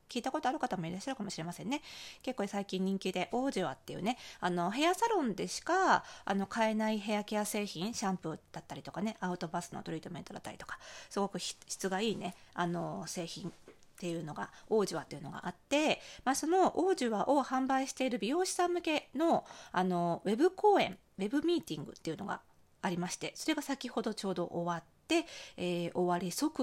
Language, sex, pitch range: Japanese, female, 175-250 Hz